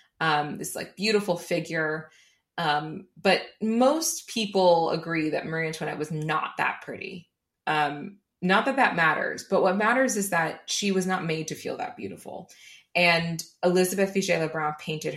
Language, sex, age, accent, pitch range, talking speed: English, female, 20-39, American, 155-195 Hz, 160 wpm